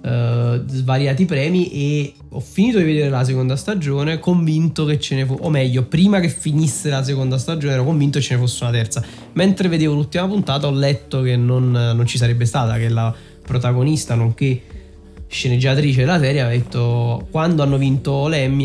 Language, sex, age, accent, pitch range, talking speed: Italian, male, 20-39, native, 125-155 Hz, 185 wpm